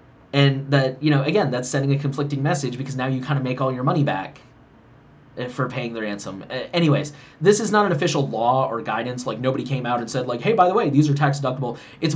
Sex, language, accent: male, English, American